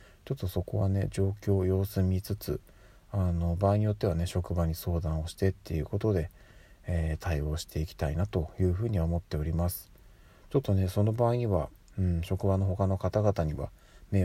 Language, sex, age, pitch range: Japanese, male, 40-59, 85-100 Hz